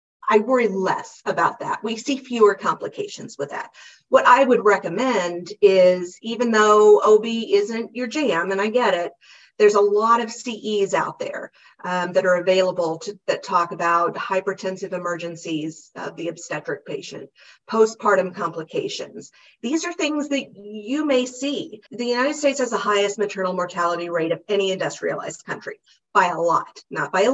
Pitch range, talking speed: 180-230 Hz, 165 wpm